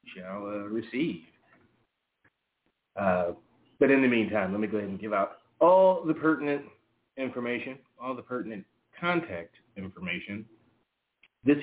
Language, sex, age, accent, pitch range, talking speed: English, male, 40-59, American, 110-165 Hz, 130 wpm